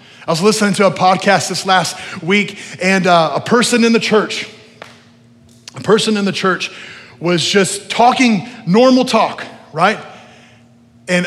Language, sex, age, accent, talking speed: English, male, 30-49, American, 150 wpm